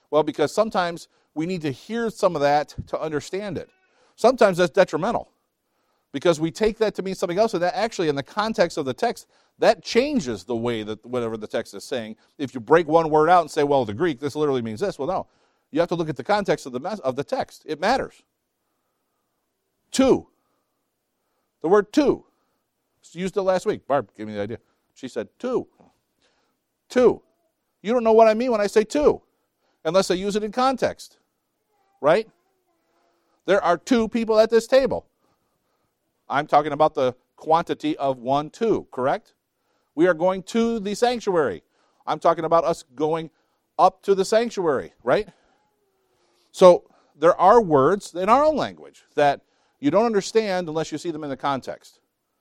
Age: 50-69